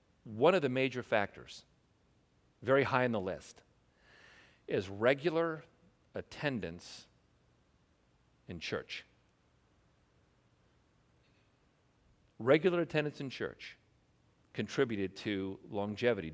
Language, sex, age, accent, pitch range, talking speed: English, male, 50-69, American, 95-125 Hz, 80 wpm